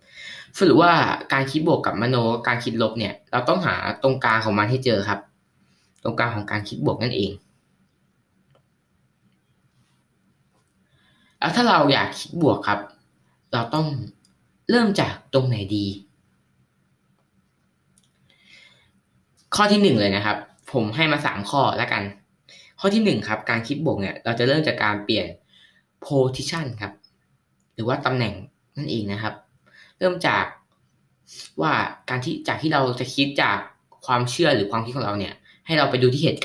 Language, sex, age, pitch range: Thai, female, 20-39, 105-135 Hz